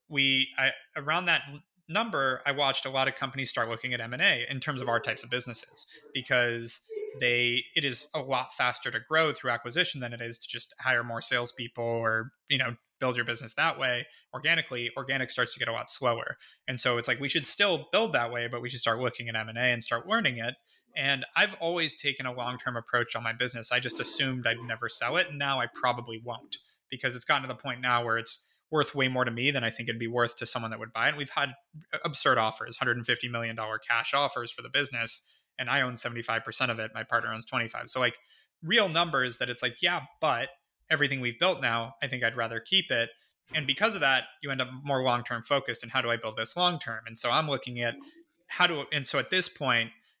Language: English